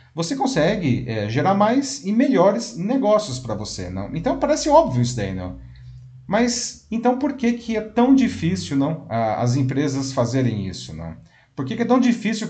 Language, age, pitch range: Portuguese, 40-59, 115-160 Hz